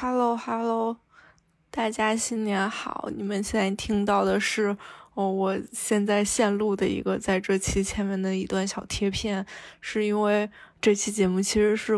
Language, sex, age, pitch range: Chinese, female, 20-39, 190-215 Hz